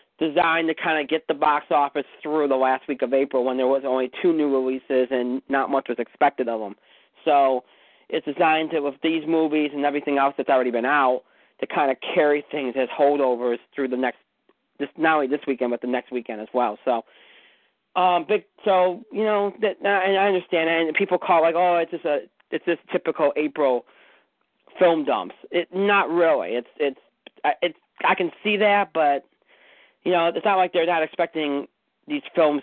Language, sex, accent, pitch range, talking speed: English, male, American, 135-180 Hz, 205 wpm